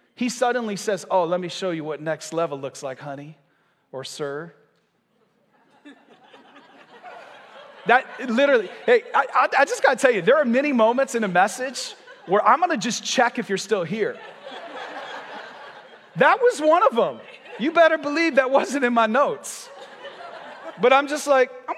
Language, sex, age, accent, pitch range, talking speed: English, male, 30-49, American, 170-245 Hz, 170 wpm